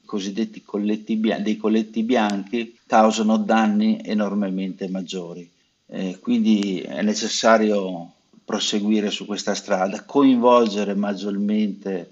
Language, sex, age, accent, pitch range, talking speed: Italian, male, 50-69, native, 95-110 Hz, 90 wpm